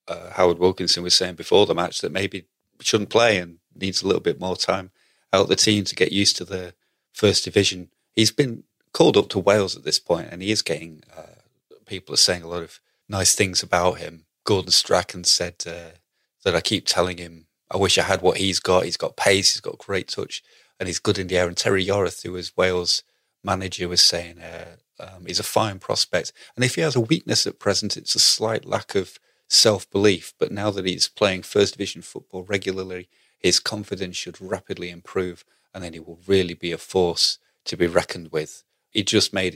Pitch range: 85-100 Hz